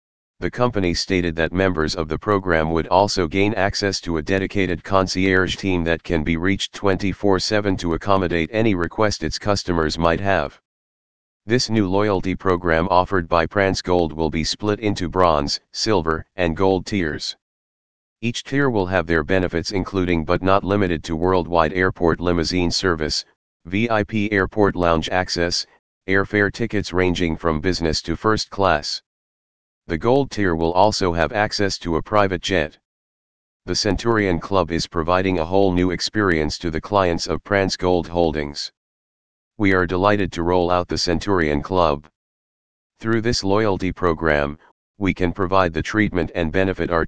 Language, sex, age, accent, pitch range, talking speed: English, male, 40-59, American, 80-100 Hz, 155 wpm